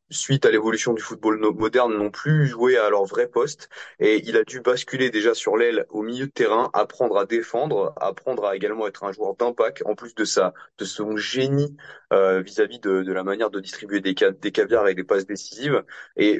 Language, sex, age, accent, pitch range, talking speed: French, male, 20-39, French, 105-155 Hz, 220 wpm